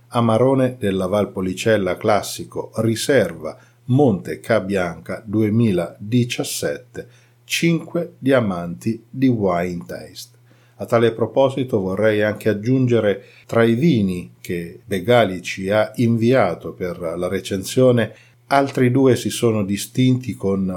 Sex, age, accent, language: male, 50-69, native, Italian